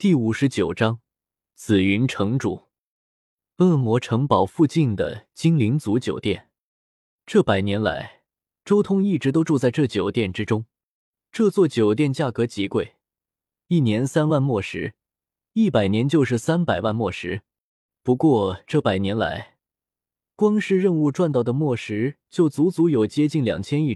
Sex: male